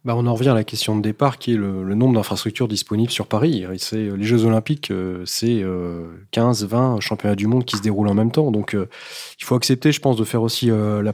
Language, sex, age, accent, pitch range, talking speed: French, male, 30-49, French, 105-125 Hz, 235 wpm